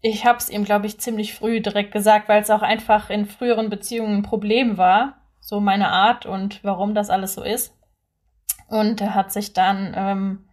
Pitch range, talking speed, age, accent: 210-240 Hz, 200 wpm, 10-29, German